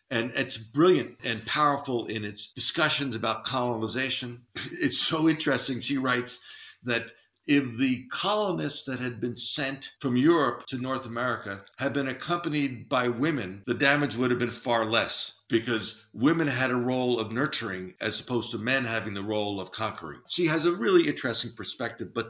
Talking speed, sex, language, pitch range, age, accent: 170 wpm, male, English, 110-140 Hz, 50-69, American